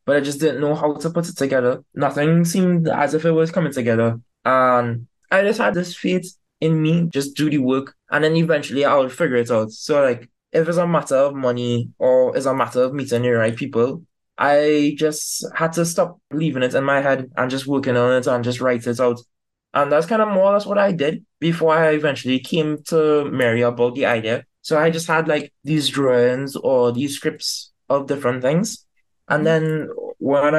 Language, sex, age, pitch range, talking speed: English, male, 20-39, 130-160 Hz, 215 wpm